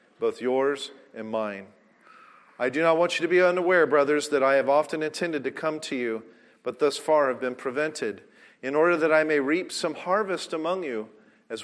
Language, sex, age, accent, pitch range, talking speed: English, male, 40-59, American, 115-155 Hz, 200 wpm